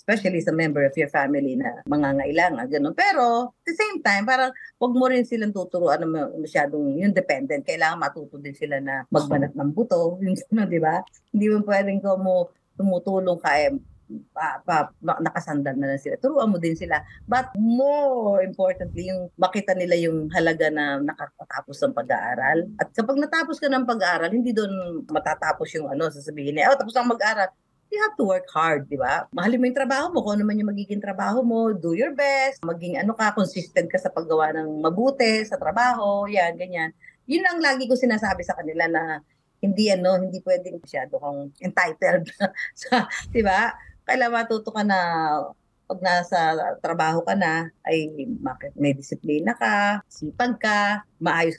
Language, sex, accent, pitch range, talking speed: English, female, Filipino, 160-240 Hz, 180 wpm